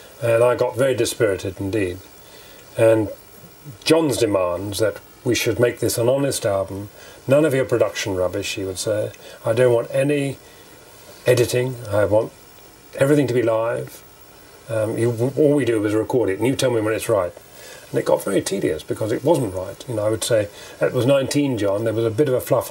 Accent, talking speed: British, 200 wpm